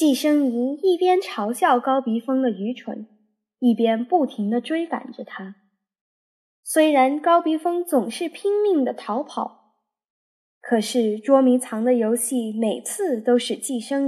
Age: 10-29